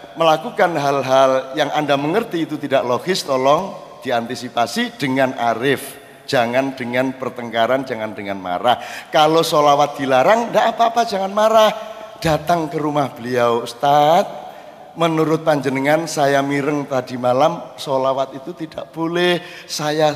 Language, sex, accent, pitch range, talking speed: Indonesian, male, native, 135-185 Hz, 120 wpm